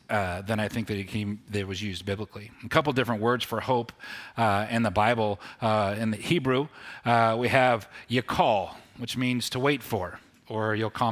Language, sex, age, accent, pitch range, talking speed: English, male, 30-49, American, 110-145 Hz, 215 wpm